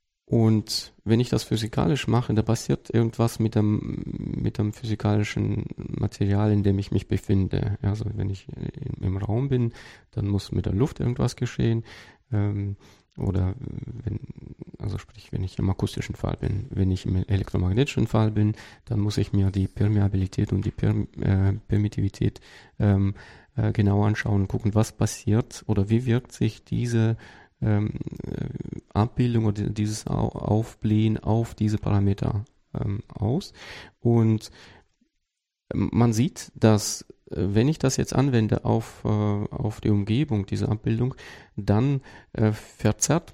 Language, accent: German, German